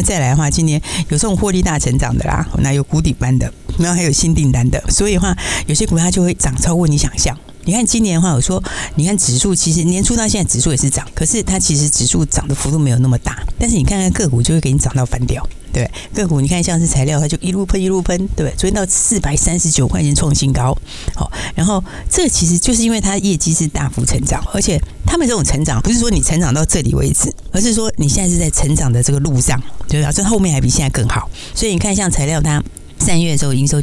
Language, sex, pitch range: Chinese, female, 135-185 Hz